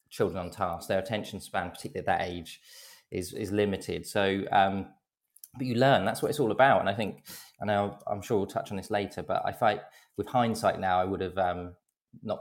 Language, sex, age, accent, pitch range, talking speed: English, male, 20-39, British, 95-105 Hz, 220 wpm